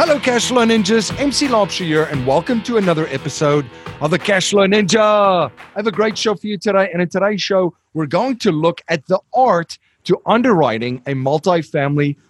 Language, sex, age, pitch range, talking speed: English, male, 40-59, 125-170 Hz, 185 wpm